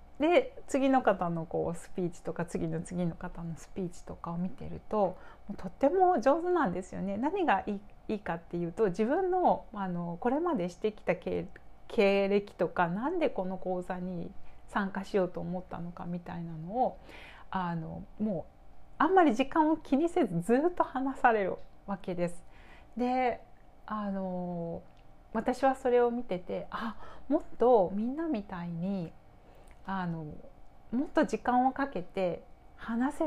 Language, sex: Japanese, female